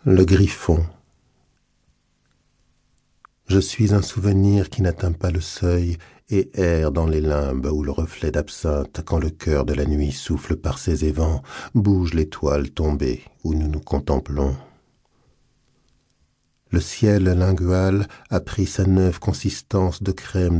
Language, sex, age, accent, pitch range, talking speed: French, male, 50-69, French, 80-95 Hz, 135 wpm